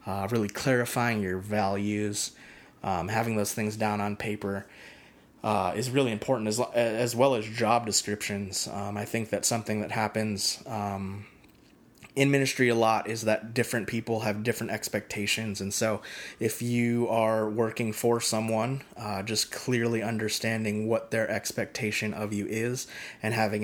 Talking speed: 155 wpm